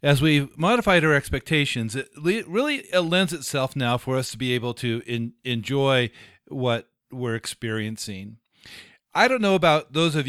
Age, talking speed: 50-69, 165 wpm